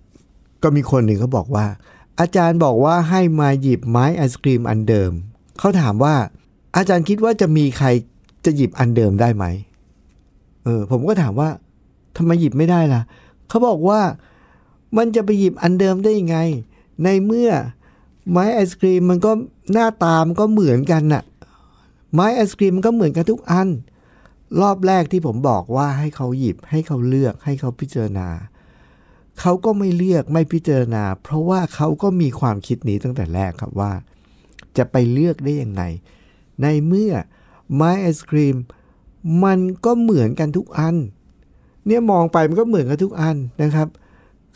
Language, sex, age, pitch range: Thai, male, 60-79, 115-180 Hz